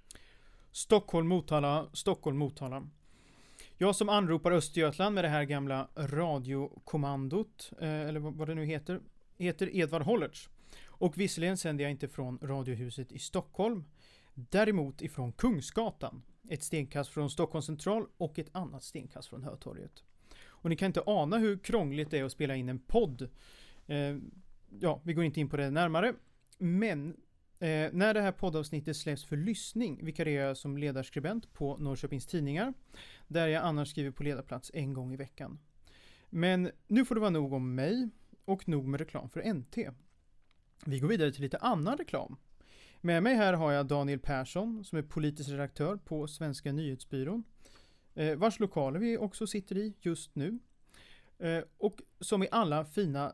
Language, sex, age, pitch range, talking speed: Swedish, male, 30-49, 140-185 Hz, 160 wpm